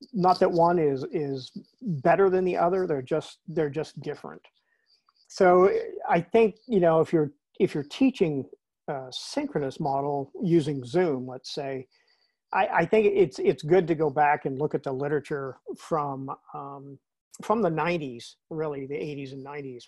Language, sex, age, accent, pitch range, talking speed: English, male, 50-69, American, 135-170 Hz, 165 wpm